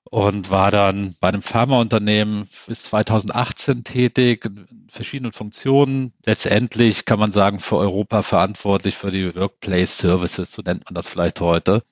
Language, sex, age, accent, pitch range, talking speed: German, male, 40-59, German, 100-125 Hz, 145 wpm